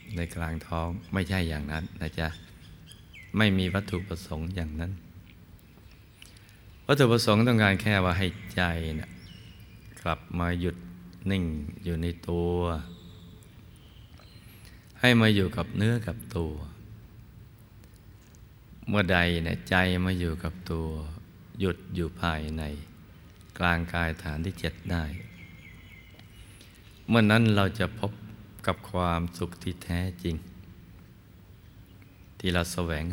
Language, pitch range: Thai, 85-100 Hz